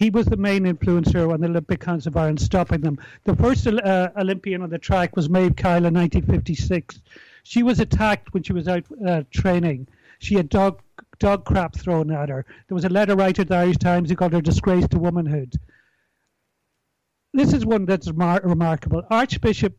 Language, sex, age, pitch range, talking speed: English, male, 60-79, 170-195 Hz, 195 wpm